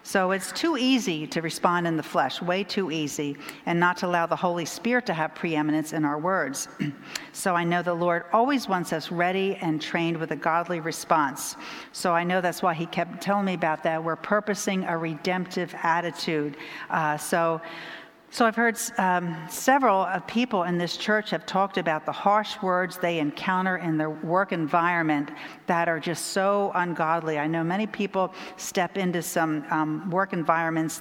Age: 50-69